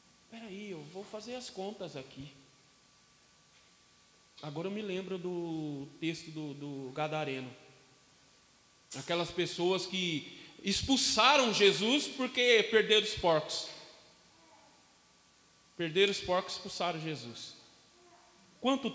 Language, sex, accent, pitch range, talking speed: Portuguese, male, Brazilian, 150-215 Hz, 100 wpm